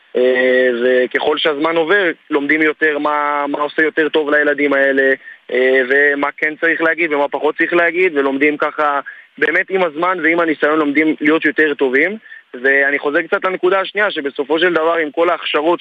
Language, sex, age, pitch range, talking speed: Hebrew, male, 20-39, 145-165 Hz, 165 wpm